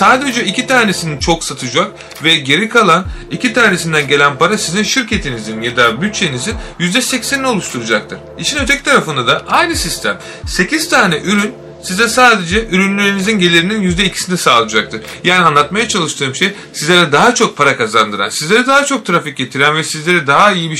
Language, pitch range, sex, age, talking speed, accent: Turkish, 145-210 Hz, male, 30-49, 155 wpm, native